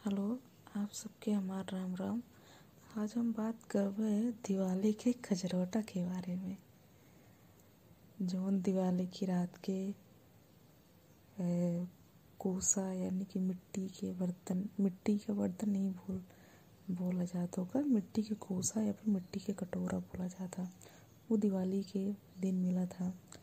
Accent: native